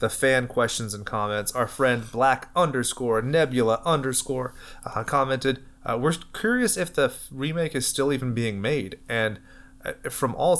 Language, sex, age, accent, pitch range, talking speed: English, male, 30-49, American, 115-140 Hz, 160 wpm